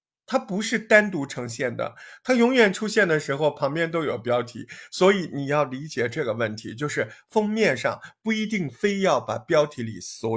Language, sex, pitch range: Chinese, male, 135-205 Hz